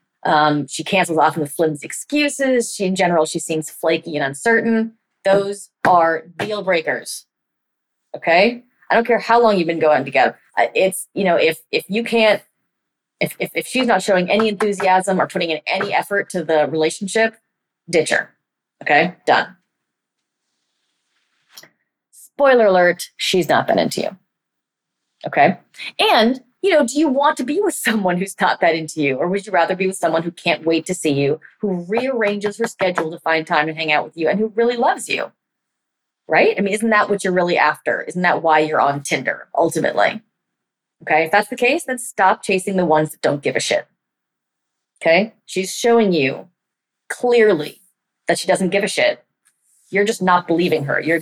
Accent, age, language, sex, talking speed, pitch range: American, 30-49, English, female, 185 wpm, 160-225 Hz